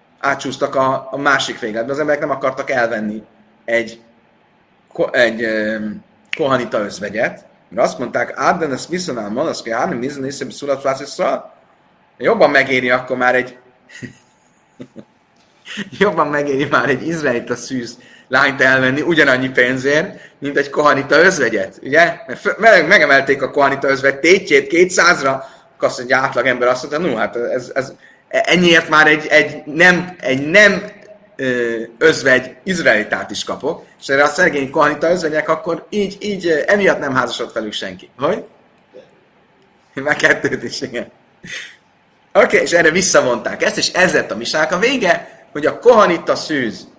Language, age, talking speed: Hungarian, 30-49, 140 wpm